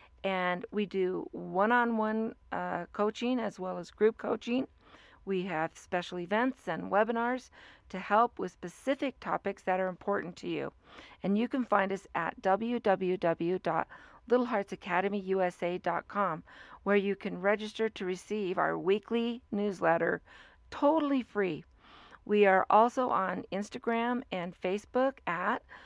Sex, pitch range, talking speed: female, 185-230 Hz, 125 wpm